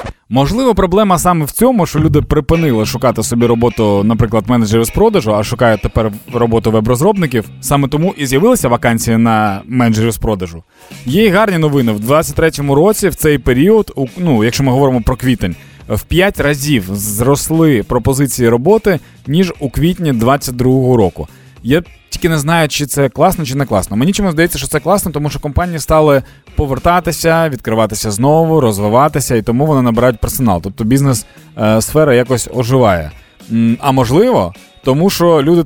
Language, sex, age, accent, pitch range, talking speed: Ukrainian, male, 20-39, native, 115-160 Hz, 160 wpm